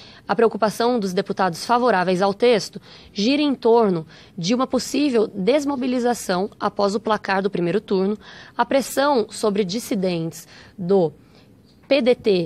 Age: 20-39